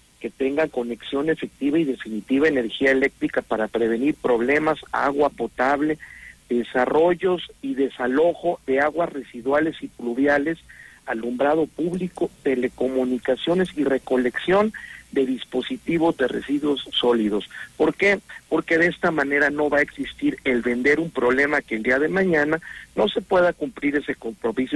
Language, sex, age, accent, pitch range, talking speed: Spanish, male, 50-69, Mexican, 130-165 Hz, 135 wpm